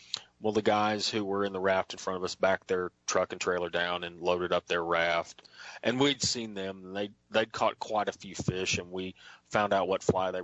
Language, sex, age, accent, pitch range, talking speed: English, male, 30-49, American, 90-110 Hz, 240 wpm